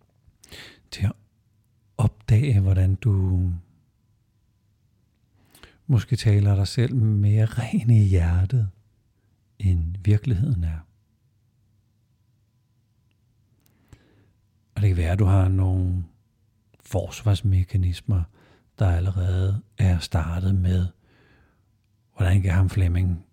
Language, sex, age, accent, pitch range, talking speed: Danish, male, 60-79, native, 95-115 Hz, 85 wpm